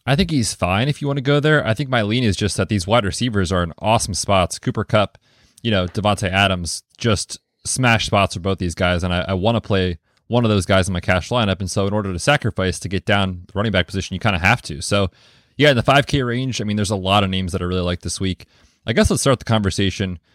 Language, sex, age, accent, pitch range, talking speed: English, male, 20-39, American, 95-110 Hz, 280 wpm